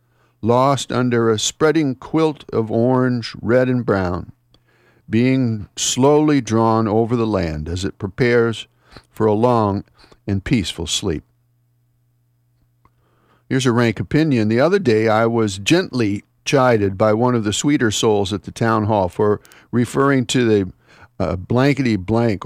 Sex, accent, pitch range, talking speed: male, American, 105-130 Hz, 140 wpm